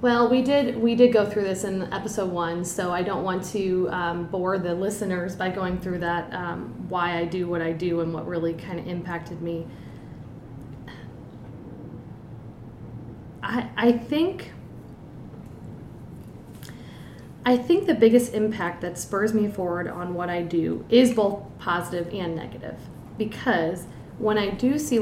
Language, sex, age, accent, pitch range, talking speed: English, female, 30-49, American, 170-200 Hz, 155 wpm